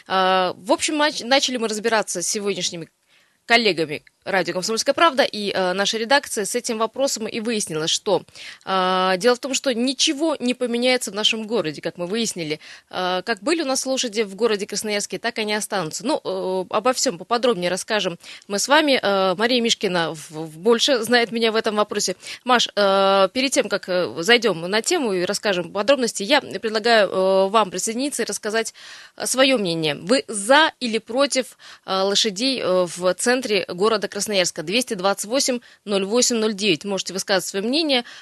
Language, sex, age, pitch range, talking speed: Russian, female, 20-39, 190-245 Hz, 160 wpm